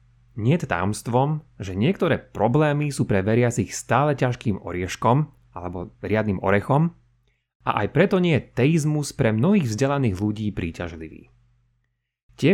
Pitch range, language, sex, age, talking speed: 110-140 Hz, Slovak, male, 30-49, 125 wpm